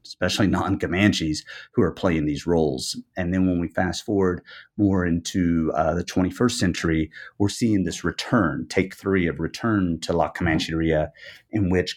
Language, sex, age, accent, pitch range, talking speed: English, male, 30-49, American, 80-95 Hz, 160 wpm